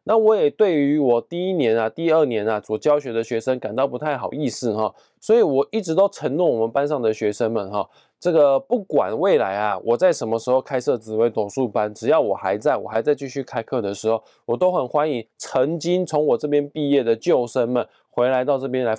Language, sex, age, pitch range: Chinese, male, 20-39, 115-160 Hz